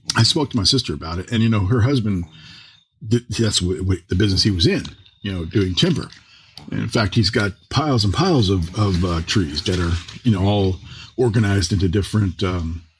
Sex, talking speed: male, 210 wpm